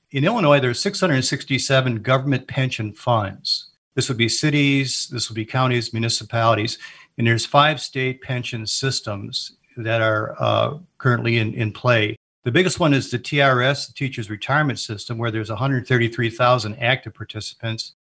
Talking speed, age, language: 150 wpm, 50-69, English